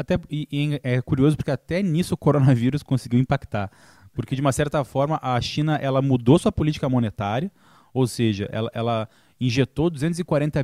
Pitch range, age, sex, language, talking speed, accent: 125-160 Hz, 20-39, male, English, 170 wpm, Brazilian